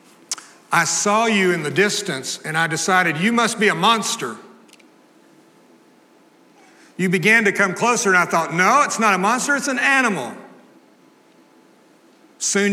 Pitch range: 125-205 Hz